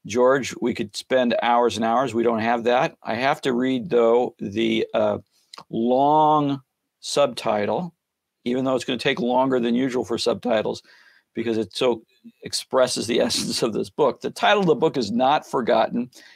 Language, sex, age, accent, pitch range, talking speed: English, male, 50-69, American, 120-155 Hz, 175 wpm